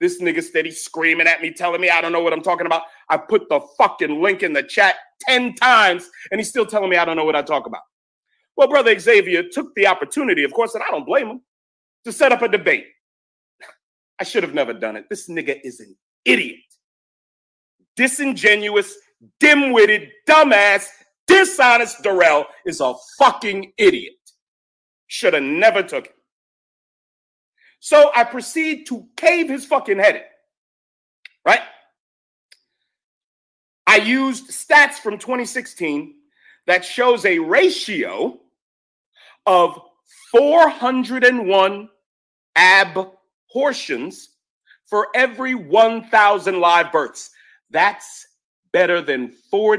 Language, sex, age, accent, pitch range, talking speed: English, male, 40-59, American, 180-290 Hz, 135 wpm